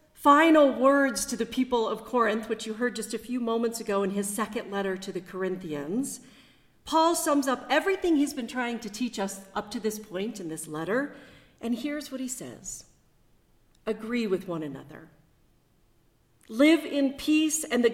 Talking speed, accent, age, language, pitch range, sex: 175 wpm, American, 50-69, English, 185-245 Hz, female